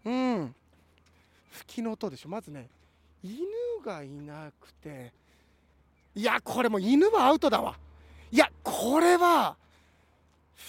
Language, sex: Japanese, male